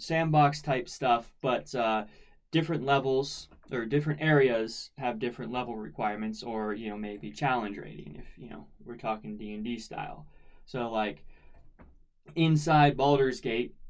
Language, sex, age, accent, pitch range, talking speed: English, male, 20-39, American, 110-145 Hz, 140 wpm